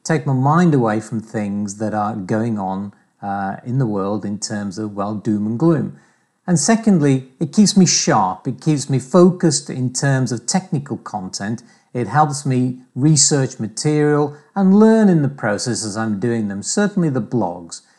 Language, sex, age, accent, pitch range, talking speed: English, male, 40-59, British, 115-165 Hz, 175 wpm